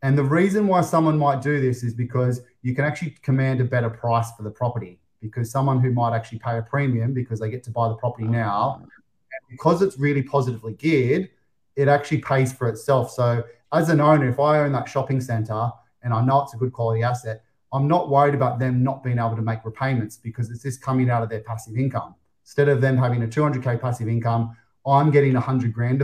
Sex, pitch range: male, 115-140 Hz